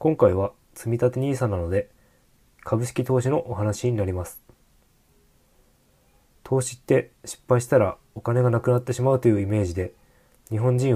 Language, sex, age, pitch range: Japanese, male, 20-39, 100-125 Hz